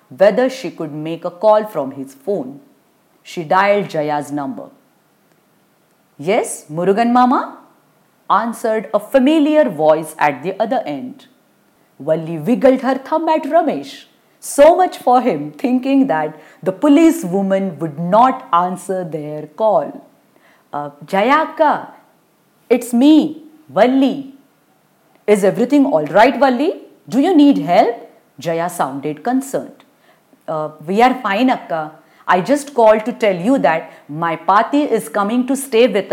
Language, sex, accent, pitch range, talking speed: English, female, Indian, 170-270 Hz, 135 wpm